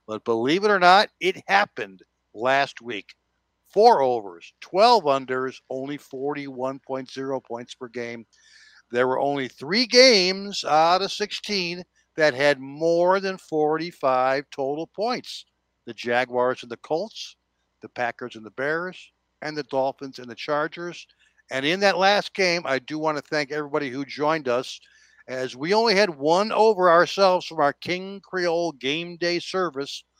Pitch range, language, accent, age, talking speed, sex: 130-170 Hz, English, American, 60-79, 155 wpm, male